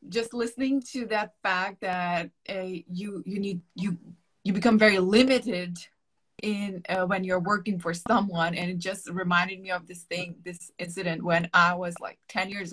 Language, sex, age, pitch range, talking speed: English, female, 20-39, 180-220 Hz, 180 wpm